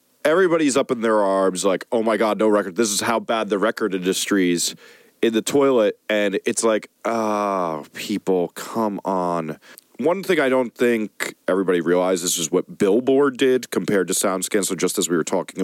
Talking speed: 190 wpm